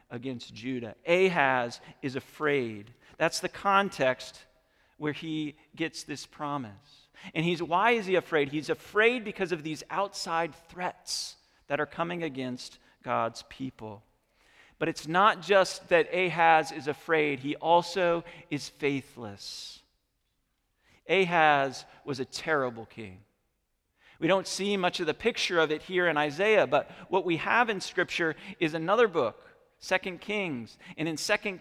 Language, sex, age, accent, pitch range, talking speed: English, male, 40-59, American, 140-180 Hz, 140 wpm